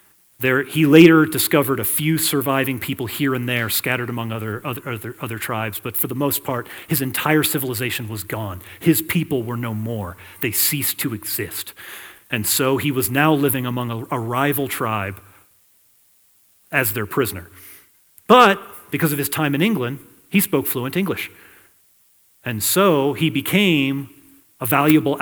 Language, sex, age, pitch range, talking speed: English, male, 40-59, 115-150 Hz, 155 wpm